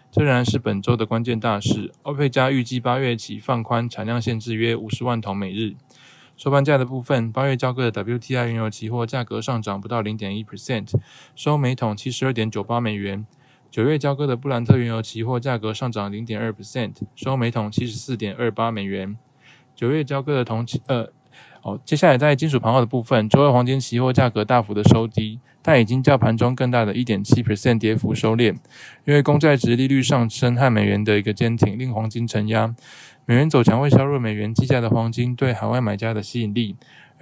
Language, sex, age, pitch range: Chinese, male, 20-39, 110-130 Hz